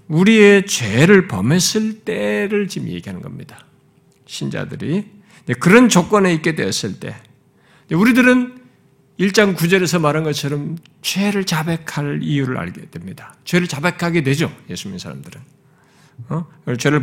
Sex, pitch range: male, 145-195 Hz